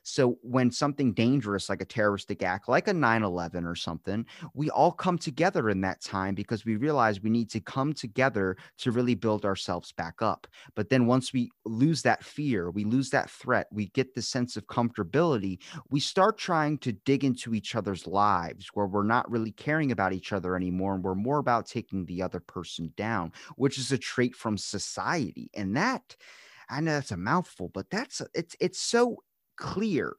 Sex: male